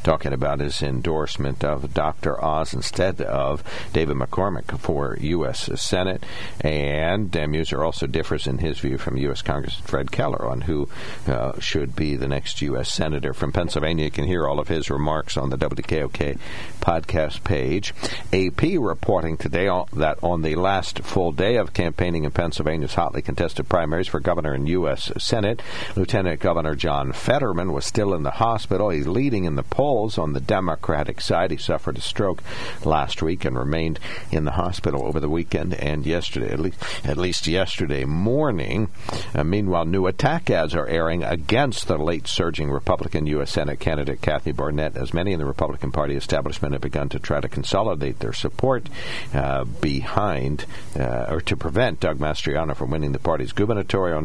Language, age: English, 60-79